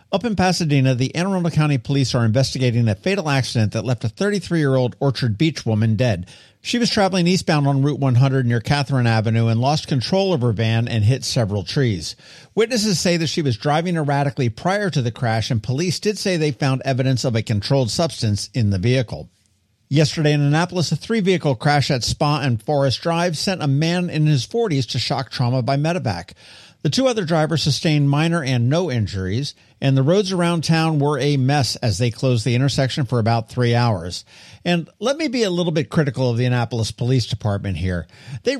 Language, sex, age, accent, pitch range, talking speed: English, male, 50-69, American, 120-165 Hz, 200 wpm